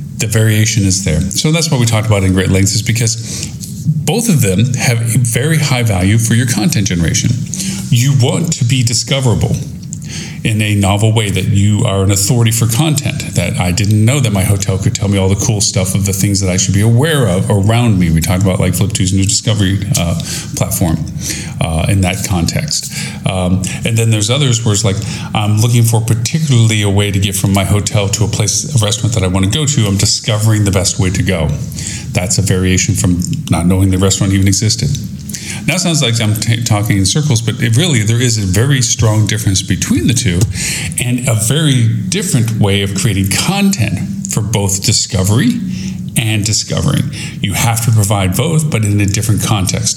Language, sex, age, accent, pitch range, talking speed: English, male, 40-59, American, 100-135 Hz, 205 wpm